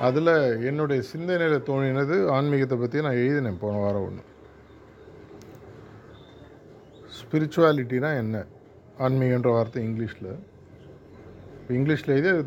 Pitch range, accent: 110-145 Hz, native